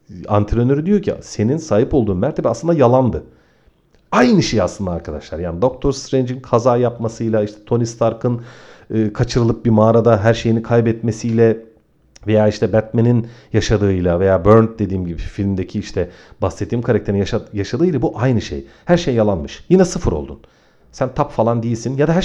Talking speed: 155 wpm